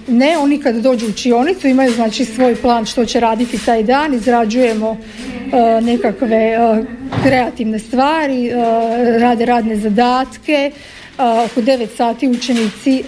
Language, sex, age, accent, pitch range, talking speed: Croatian, female, 50-69, native, 230-265 Hz, 140 wpm